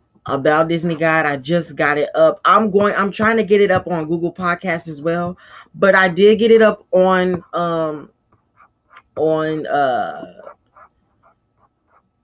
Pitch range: 150-180 Hz